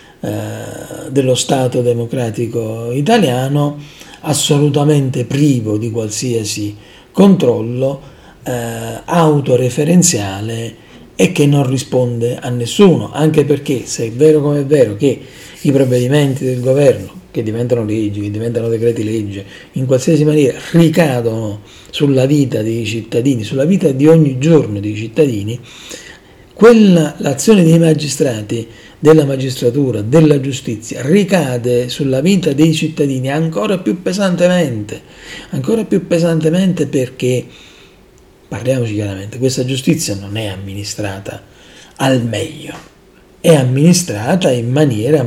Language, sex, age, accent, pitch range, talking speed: Italian, male, 40-59, native, 115-155 Hz, 110 wpm